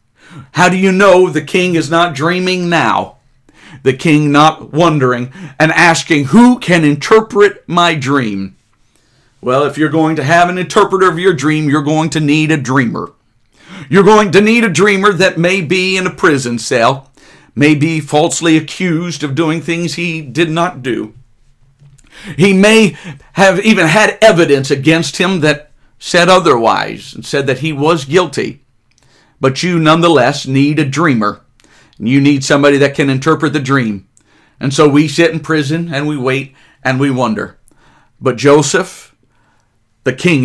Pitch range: 135-175 Hz